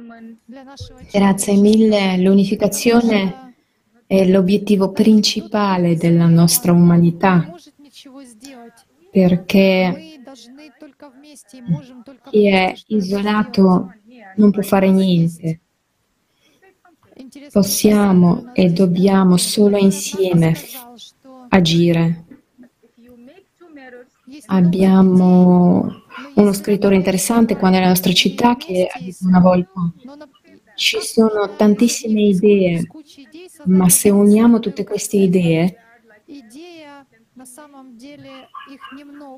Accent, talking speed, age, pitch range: native, 70 wpm, 20-39, 190-250 Hz